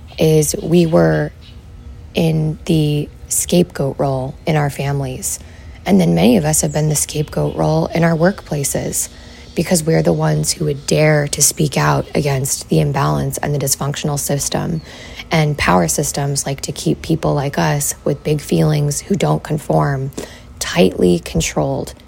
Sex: female